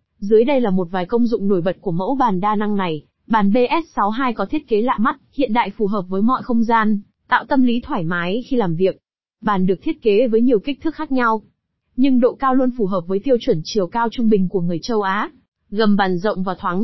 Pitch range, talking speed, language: 195-250 Hz, 250 wpm, Vietnamese